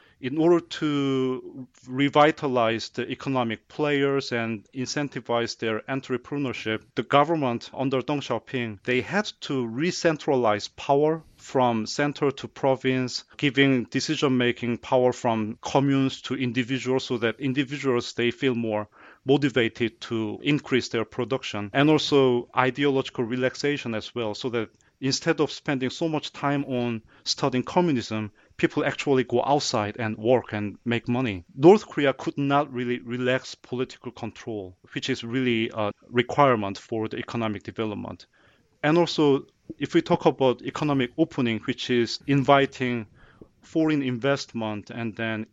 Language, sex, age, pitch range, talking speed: English, male, 40-59, 115-140 Hz, 135 wpm